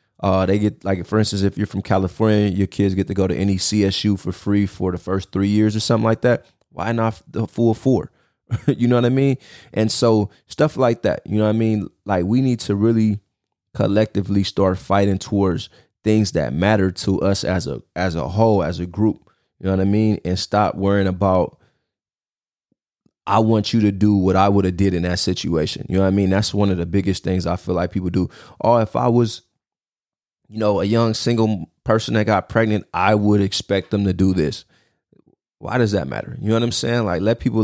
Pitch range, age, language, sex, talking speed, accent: 95-110 Hz, 20-39, English, male, 225 wpm, American